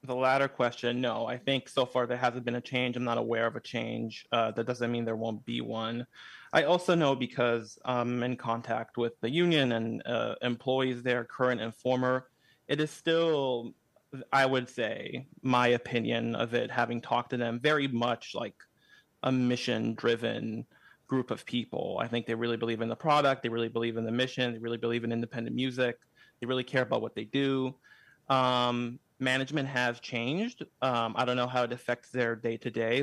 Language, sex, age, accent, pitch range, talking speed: English, male, 30-49, American, 115-130 Hz, 195 wpm